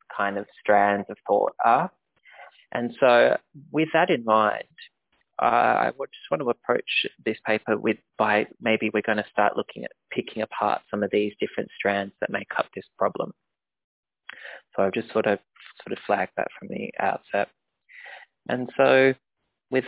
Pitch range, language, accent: 105-130 Hz, English, Australian